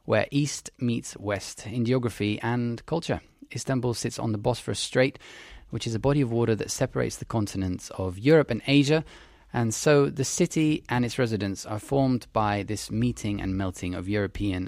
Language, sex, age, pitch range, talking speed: English, male, 20-39, 100-125 Hz, 180 wpm